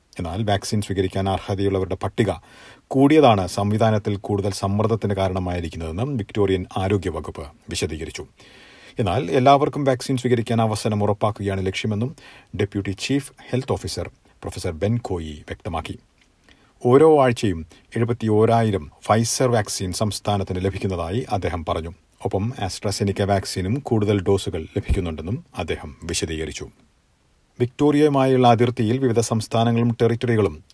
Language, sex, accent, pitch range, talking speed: Malayalam, male, native, 95-120 Hz, 100 wpm